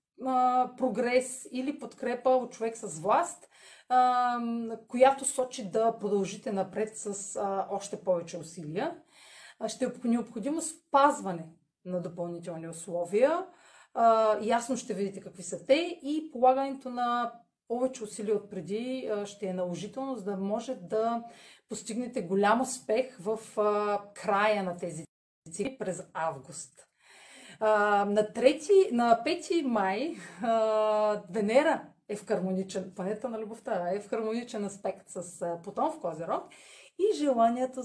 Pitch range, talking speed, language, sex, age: 195-255 Hz, 120 wpm, Bulgarian, female, 30-49